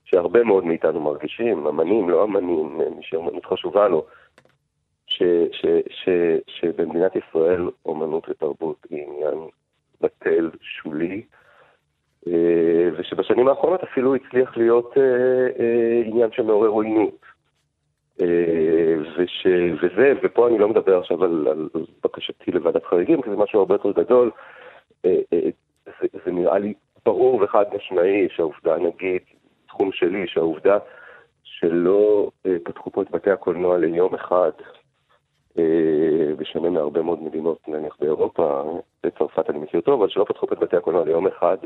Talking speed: 115 wpm